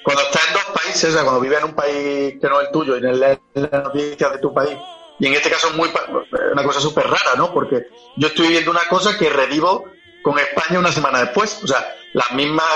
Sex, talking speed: male, 255 wpm